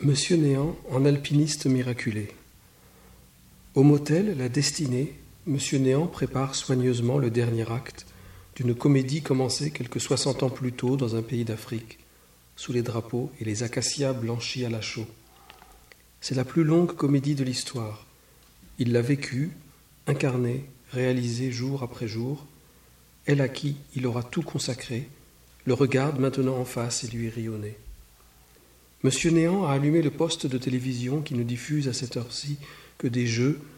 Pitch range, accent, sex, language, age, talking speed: 120-140 Hz, French, male, English, 50-69, 155 wpm